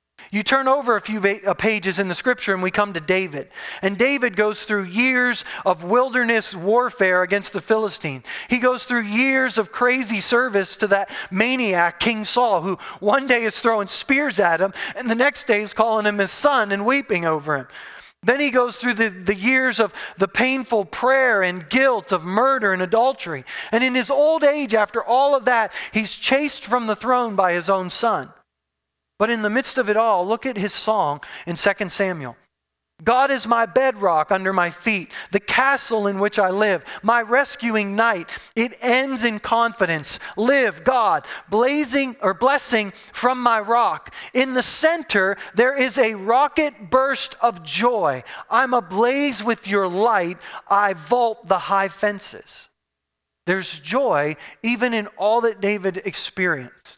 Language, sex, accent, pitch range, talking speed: English, male, American, 190-250 Hz, 170 wpm